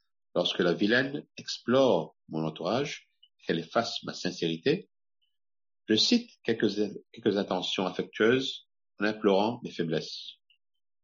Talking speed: 110 wpm